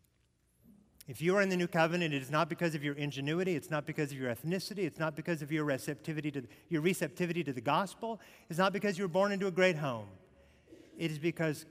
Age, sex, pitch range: 50-69, male, 115-175 Hz